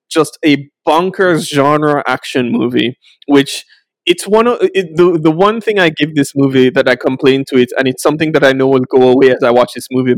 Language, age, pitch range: English, 20-39, 130-170 Hz